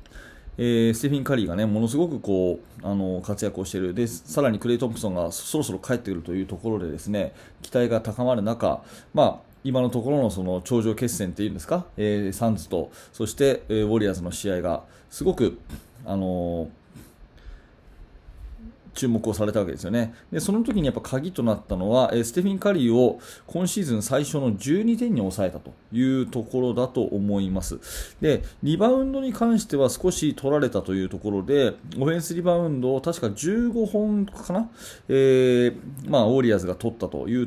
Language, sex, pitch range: Japanese, male, 105-150 Hz